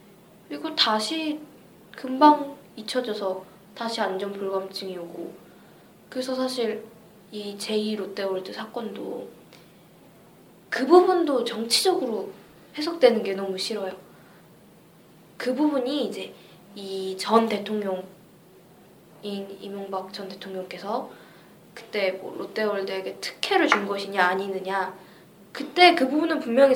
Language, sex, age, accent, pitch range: Korean, female, 20-39, native, 195-270 Hz